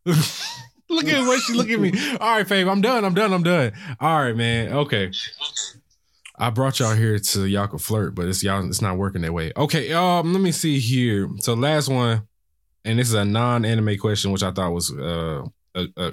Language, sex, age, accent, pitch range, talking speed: English, male, 20-39, American, 95-120 Hz, 215 wpm